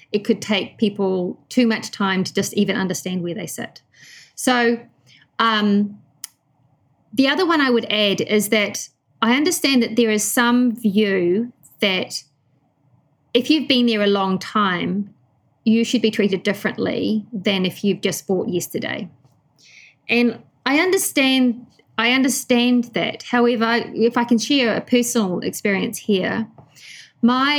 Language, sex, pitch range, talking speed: English, female, 190-235 Hz, 140 wpm